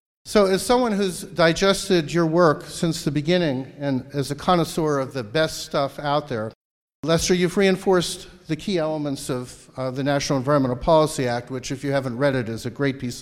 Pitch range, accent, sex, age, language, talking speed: 125-165 Hz, American, male, 50-69, English, 195 wpm